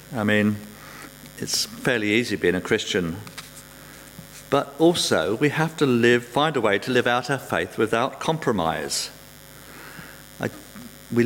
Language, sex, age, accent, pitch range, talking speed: English, male, 50-69, British, 110-140 Hz, 140 wpm